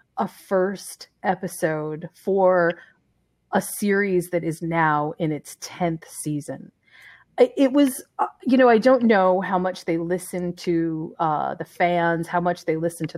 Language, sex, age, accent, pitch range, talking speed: English, female, 30-49, American, 165-220 Hz, 150 wpm